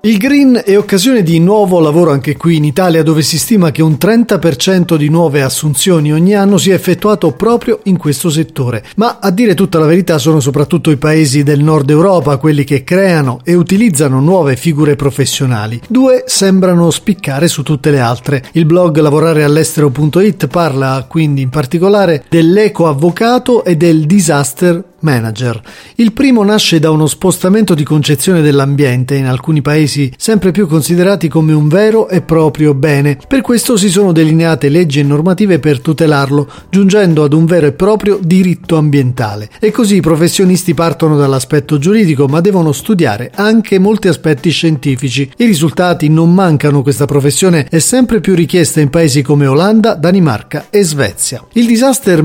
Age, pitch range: 40-59, 145-190 Hz